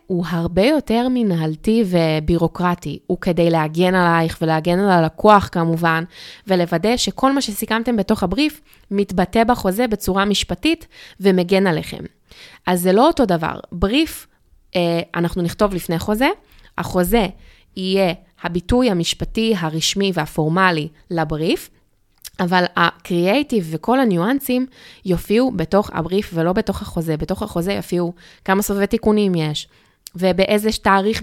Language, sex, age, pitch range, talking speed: Hebrew, female, 20-39, 170-220 Hz, 115 wpm